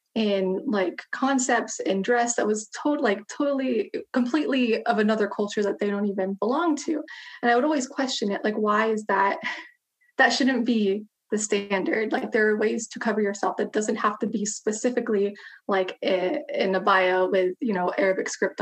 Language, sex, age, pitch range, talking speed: English, female, 20-39, 200-245 Hz, 185 wpm